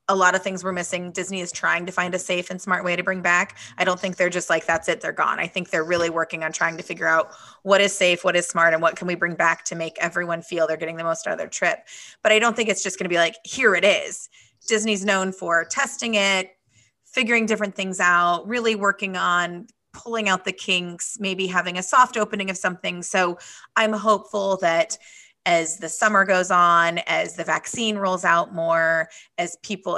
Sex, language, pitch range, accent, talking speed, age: female, English, 170-205 Hz, American, 230 wpm, 20-39